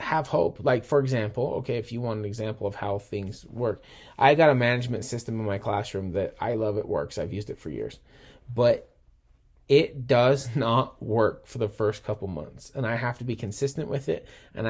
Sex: male